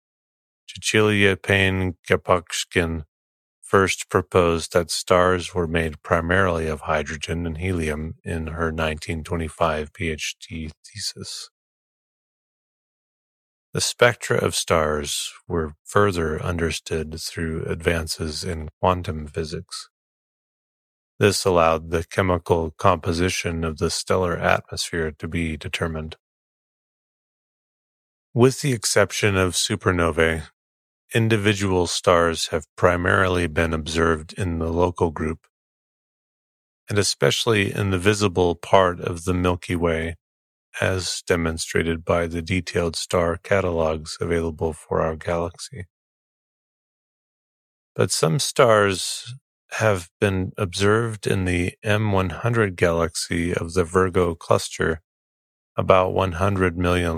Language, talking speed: English, 100 wpm